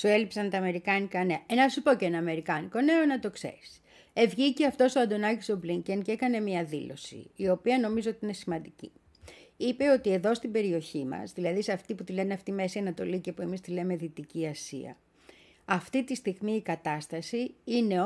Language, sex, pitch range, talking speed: Greek, female, 175-250 Hz, 205 wpm